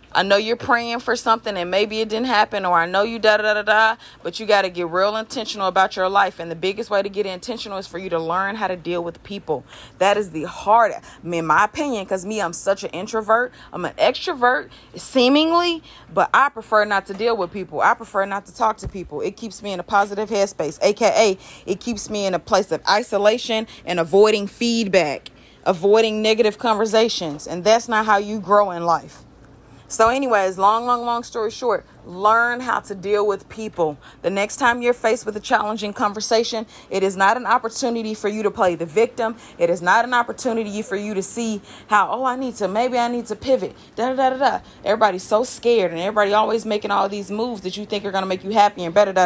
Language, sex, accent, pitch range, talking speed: English, female, American, 190-230 Hz, 230 wpm